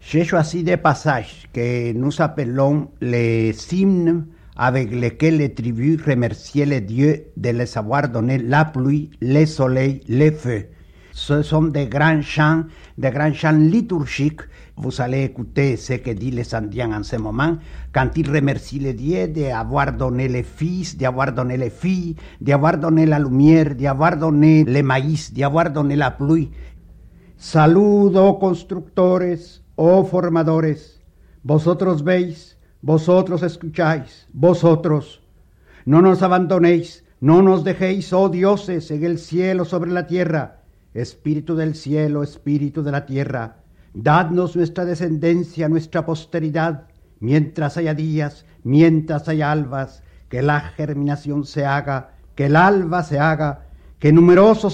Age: 60-79